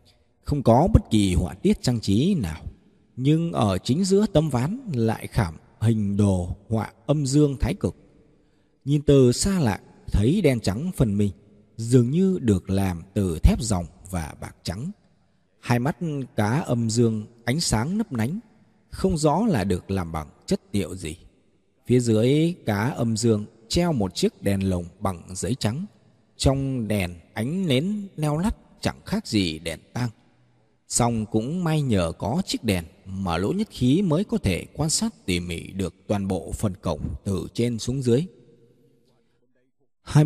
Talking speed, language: 170 wpm, Vietnamese